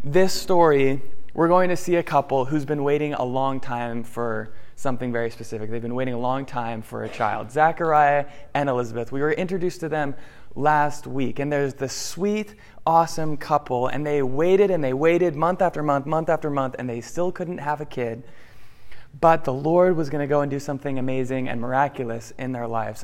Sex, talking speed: male, 205 wpm